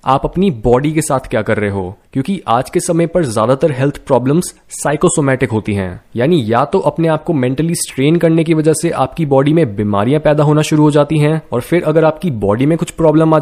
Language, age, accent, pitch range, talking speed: Hindi, 20-39, native, 130-165 Hz, 230 wpm